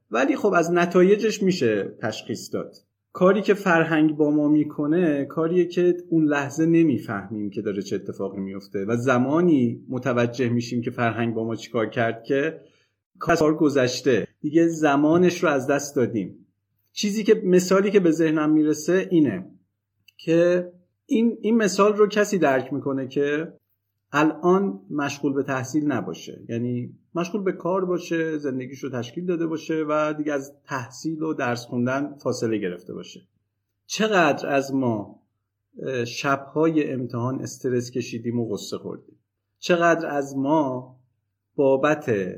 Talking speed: 140 wpm